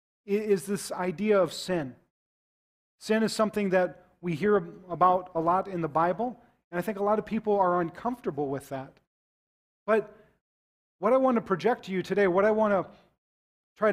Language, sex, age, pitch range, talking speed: English, male, 40-59, 175-215 Hz, 180 wpm